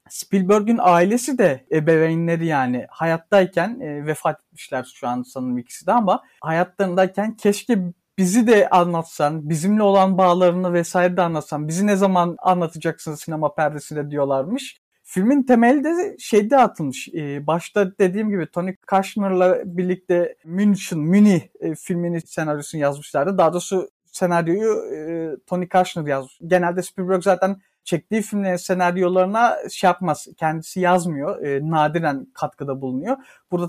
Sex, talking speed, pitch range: male, 130 wpm, 165-210 Hz